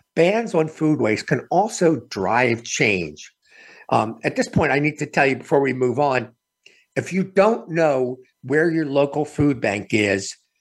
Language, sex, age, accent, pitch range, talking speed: English, male, 50-69, American, 125-185 Hz, 175 wpm